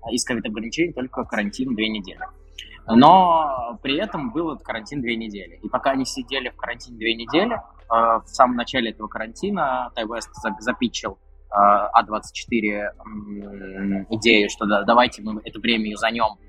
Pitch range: 105-125 Hz